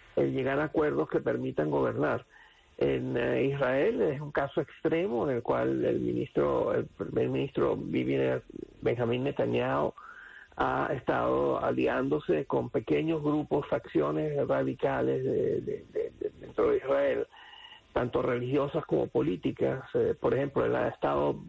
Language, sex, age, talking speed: English, male, 50-69, 115 wpm